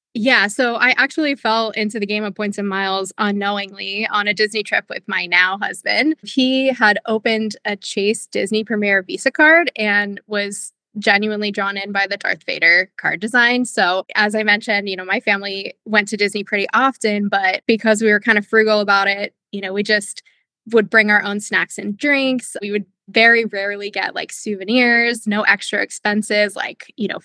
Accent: American